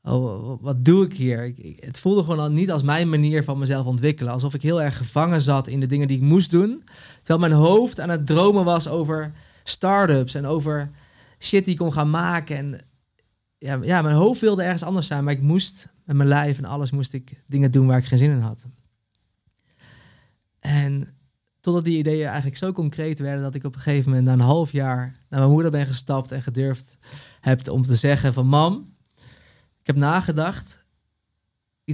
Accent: Dutch